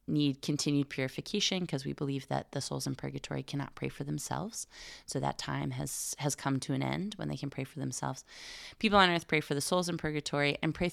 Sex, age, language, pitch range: female, 20-39, English, 135-160 Hz